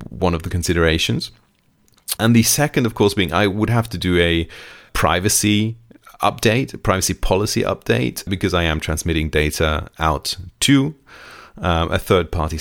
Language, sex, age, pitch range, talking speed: English, male, 30-49, 80-110 Hz, 150 wpm